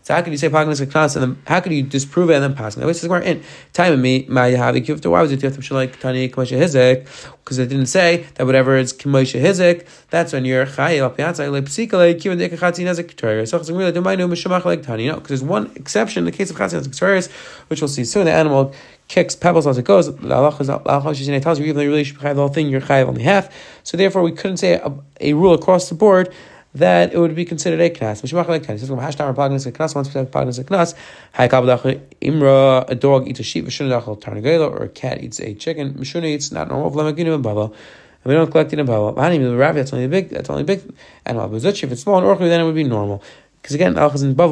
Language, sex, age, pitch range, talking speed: English, male, 30-49, 135-165 Hz, 190 wpm